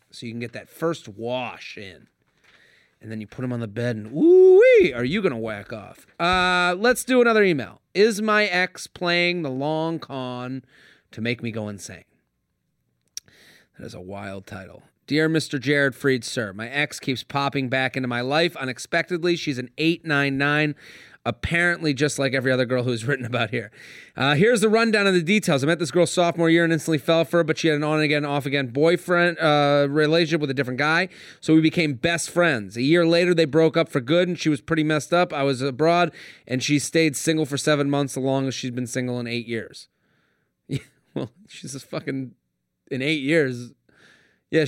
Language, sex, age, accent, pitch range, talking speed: English, male, 30-49, American, 125-160 Hz, 205 wpm